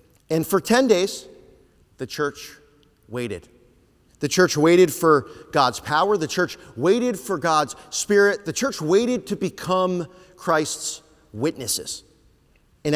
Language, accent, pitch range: English, American, 125-180 Hz